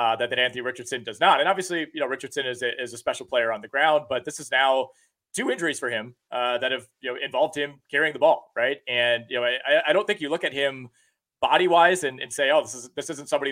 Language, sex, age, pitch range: English, male, 30-49, 120-150 Hz